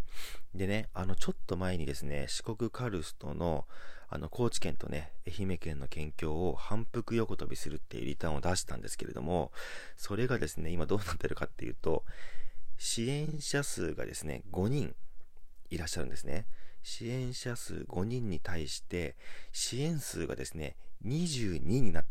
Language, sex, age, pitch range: Japanese, male, 40-59, 75-110 Hz